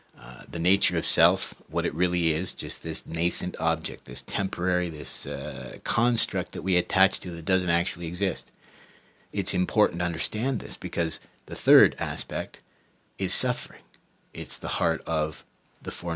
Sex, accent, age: male, American, 50-69